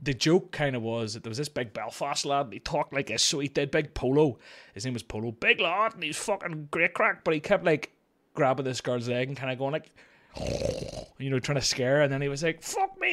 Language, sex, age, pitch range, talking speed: English, male, 20-39, 115-150 Hz, 265 wpm